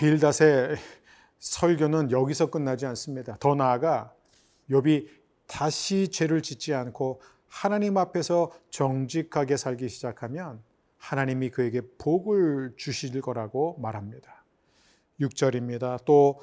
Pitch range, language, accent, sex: 125-160 Hz, Korean, native, male